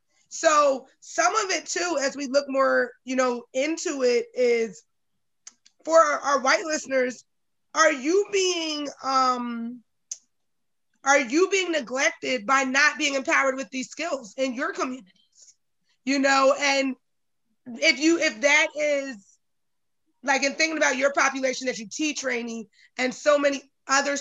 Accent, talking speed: American, 145 wpm